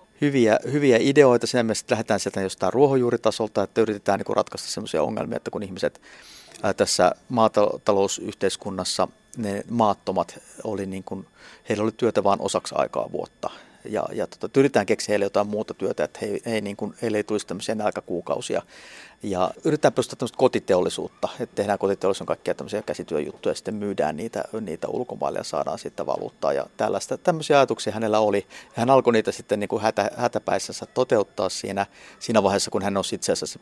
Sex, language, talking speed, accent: male, Finnish, 165 wpm, native